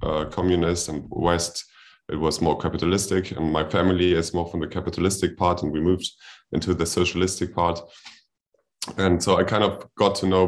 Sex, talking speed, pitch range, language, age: male, 185 wpm, 80-90 Hz, English, 20-39